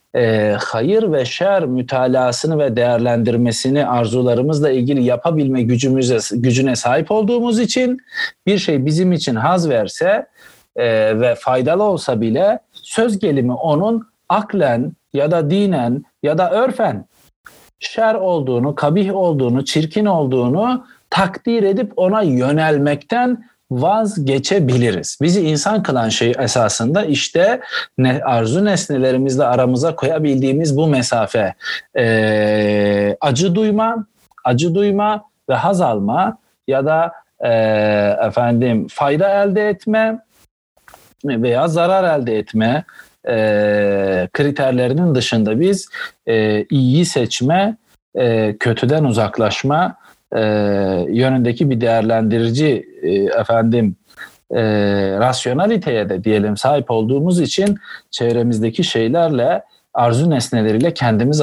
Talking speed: 105 wpm